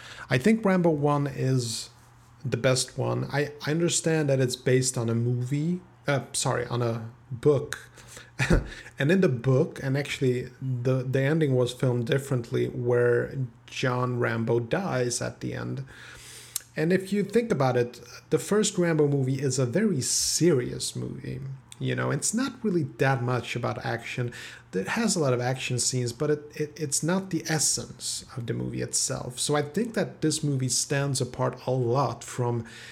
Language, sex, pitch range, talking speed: English, male, 120-150 Hz, 170 wpm